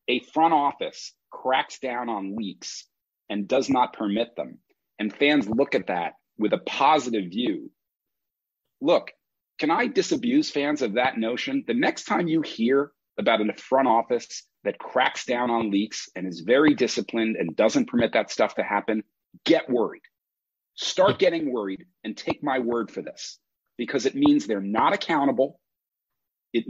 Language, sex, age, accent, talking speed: English, male, 40-59, American, 160 wpm